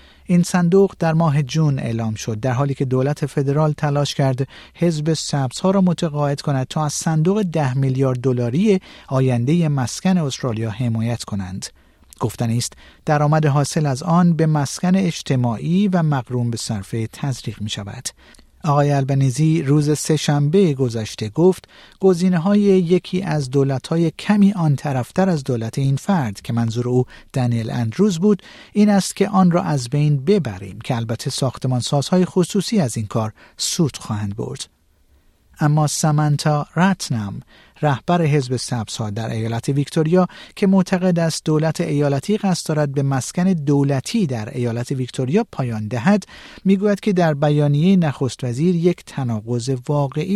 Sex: male